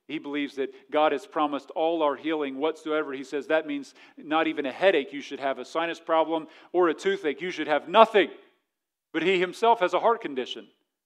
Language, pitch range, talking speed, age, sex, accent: English, 165-255 Hz, 205 wpm, 40-59, male, American